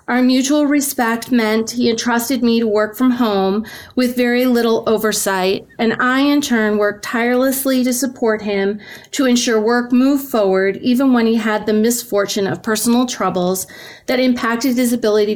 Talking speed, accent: 165 wpm, American